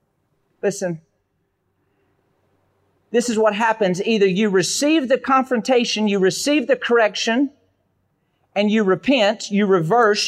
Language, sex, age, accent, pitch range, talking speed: English, male, 40-59, American, 150-210 Hz, 110 wpm